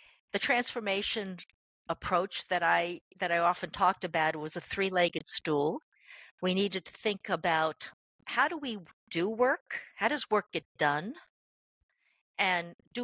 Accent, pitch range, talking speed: American, 160-210 Hz, 145 wpm